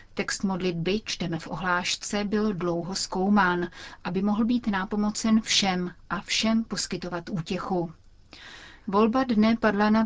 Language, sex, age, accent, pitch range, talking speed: Czech, female, 30-49, native, 180-215 Hz, 125 wpm